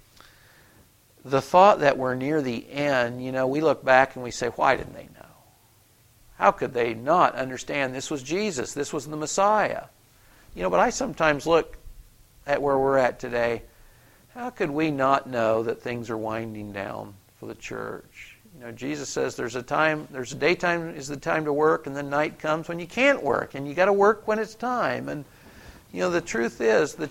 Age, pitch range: 50-69, 125-165 Hz